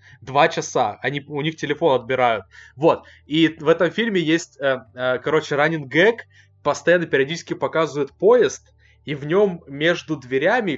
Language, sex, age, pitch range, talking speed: Russian, male, 20-39, 135-185 Hz, 135 wpm